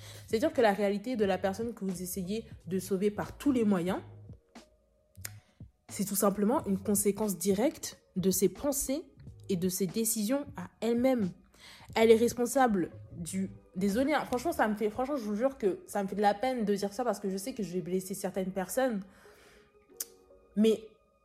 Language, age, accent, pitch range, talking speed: French, 20-39, French, 185-255 Hz, 175 wpm